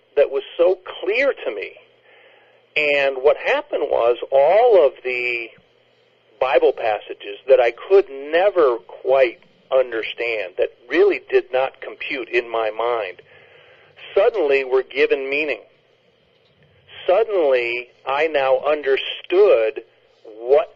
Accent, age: American, 40-59